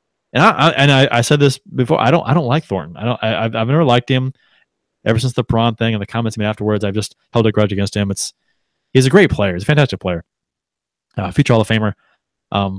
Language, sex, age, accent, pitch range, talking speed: English, male, 20-39, American, 105-135 Hz, 265 wpm